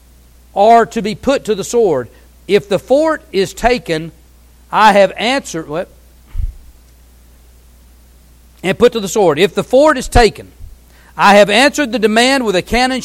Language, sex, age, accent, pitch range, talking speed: English, male, 40-59, American, 155-245 Hz, 150 wpm